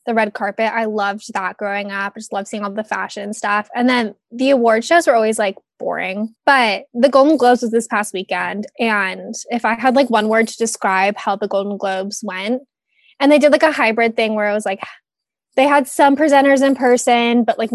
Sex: female